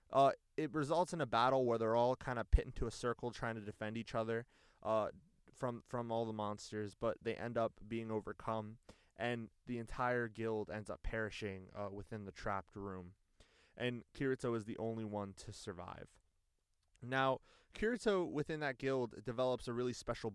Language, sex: English, male